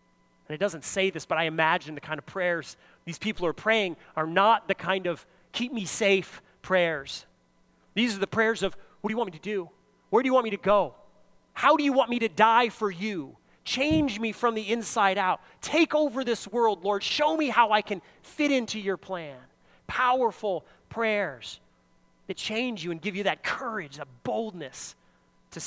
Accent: American